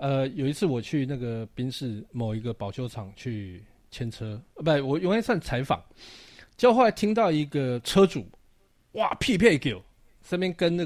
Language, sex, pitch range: Chinese, male, 110-165 Hz